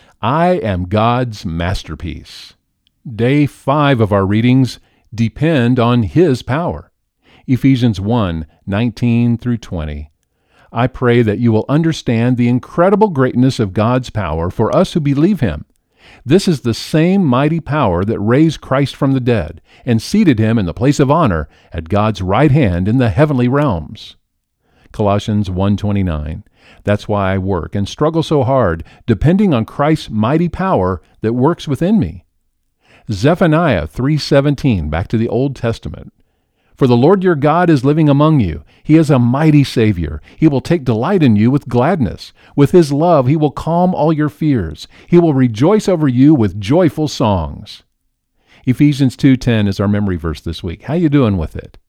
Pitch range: 100-145 Hz